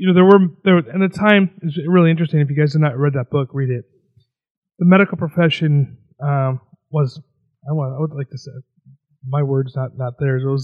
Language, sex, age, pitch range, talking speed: English, male, 30-49, 135-170 Hz, 225 wpm